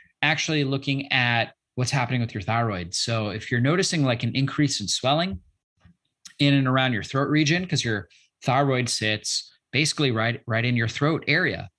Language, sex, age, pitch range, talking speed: English, male, 30-49, 110-140 Hz, 175 wpm